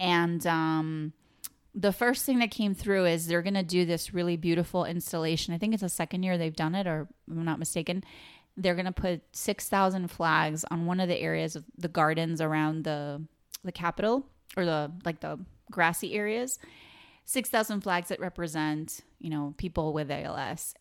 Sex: female